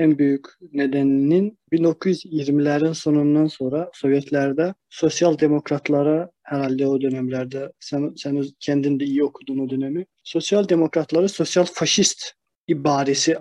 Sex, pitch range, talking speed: male, 140-160 Hz, 110 wpm